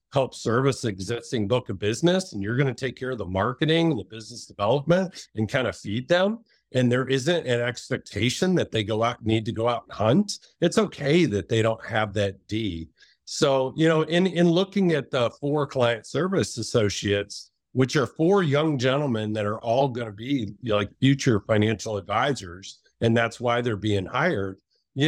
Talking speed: 195 wpm